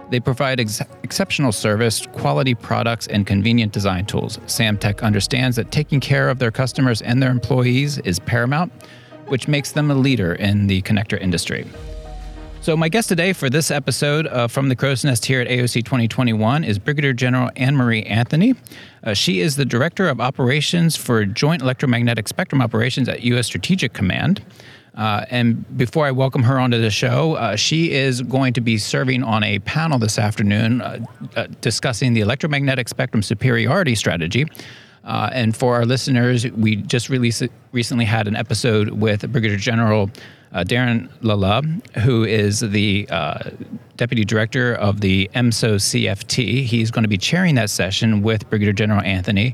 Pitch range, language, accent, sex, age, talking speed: 110-135 Hz, English, American, male, 30-49, 165 wpm